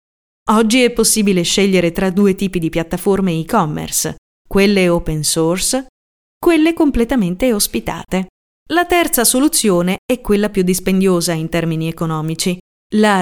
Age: 30-49